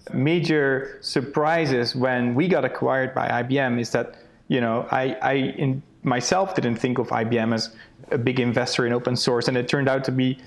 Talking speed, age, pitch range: 190 wpm, 30-49, 125-145 Hz